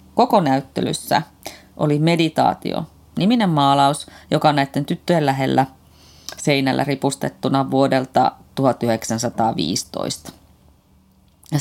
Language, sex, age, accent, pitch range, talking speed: Finnish, female, 30-49, native, 140-185 Hz, 85 wpm